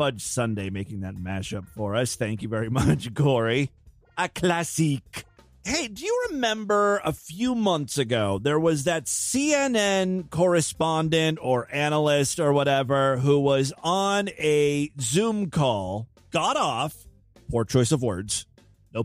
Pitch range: 125-185 Hz